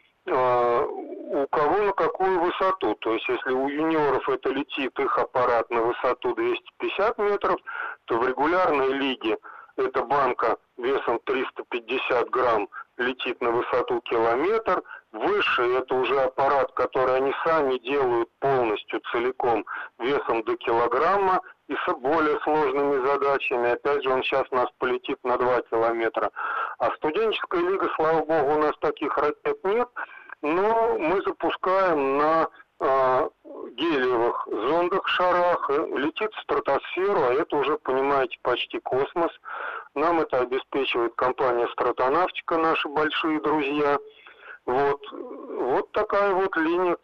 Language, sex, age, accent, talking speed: Russian, male, 40-59, native, 125 wpm